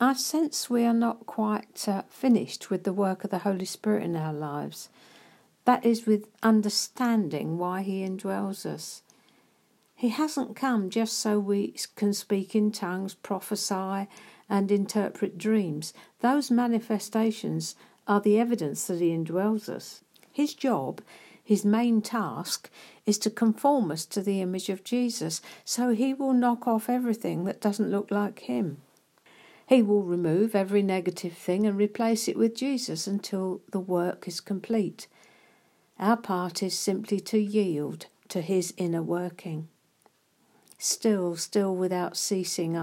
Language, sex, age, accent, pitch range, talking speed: English, female, 60-79, British, 180-220 Hz, 145 wpm